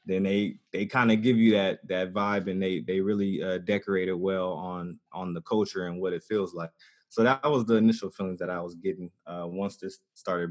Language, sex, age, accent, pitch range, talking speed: English, male, 20-39, American, 95-110 Hz, 235 wpm